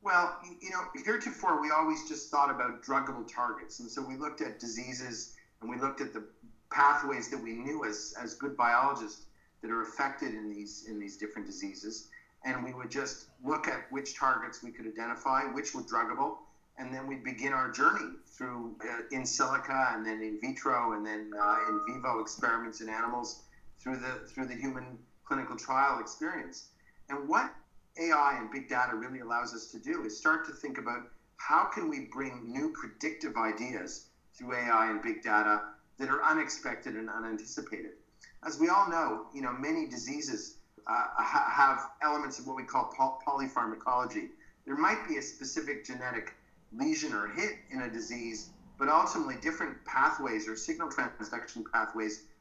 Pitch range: 115-155 Hz